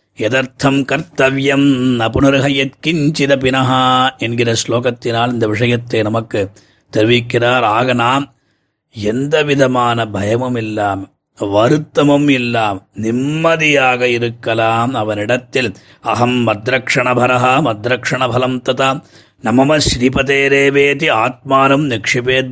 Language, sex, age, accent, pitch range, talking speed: Tamil, male, 30-49, native, 115-135 Hz, 70 wpm